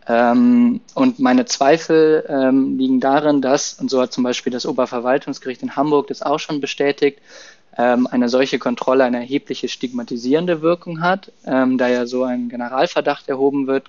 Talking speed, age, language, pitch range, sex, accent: 165 wpm, 20-39, German, 125-160 Hz, male, German